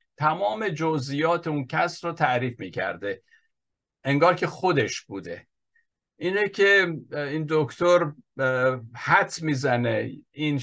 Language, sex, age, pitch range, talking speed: Persian, male, 50-69, 120-155 Hz, 100 wpm